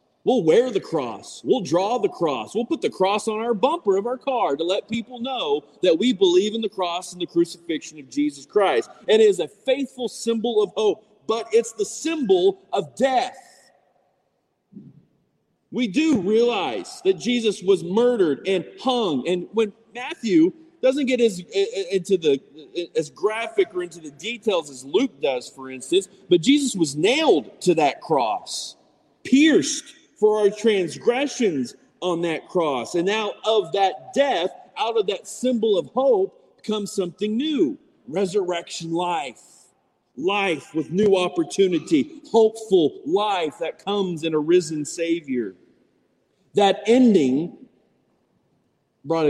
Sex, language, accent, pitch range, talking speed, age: male, English, American, 170-270 Hz, 150 wpm, 40-59